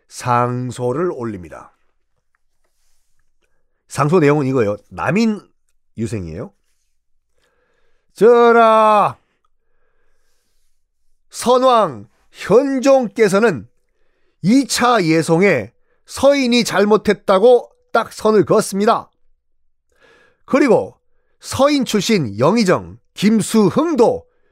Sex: male